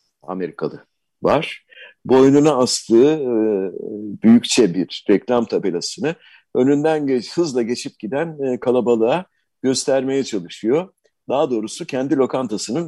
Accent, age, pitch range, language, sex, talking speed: native, 50-69, 115-155 Hz, Turkish, male, 95 wpm